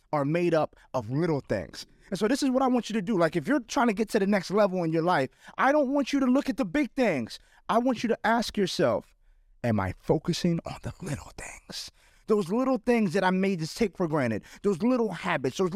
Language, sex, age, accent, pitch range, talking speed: English, male, 30-49, American, 155-230 Hz, 250 wpm